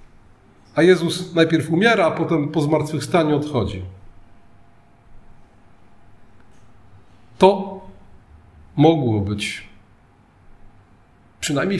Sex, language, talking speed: male, Polish, 65 wpm